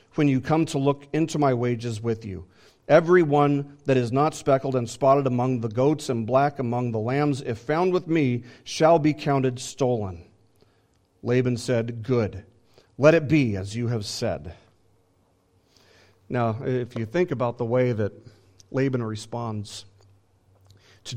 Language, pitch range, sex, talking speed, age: English, 120-165 Hz, male, 155 wpm, 40-59